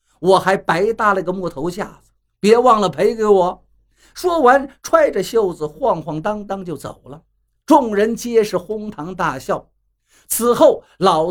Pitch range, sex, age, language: 155-230 Hz, male, 50-69, Chinese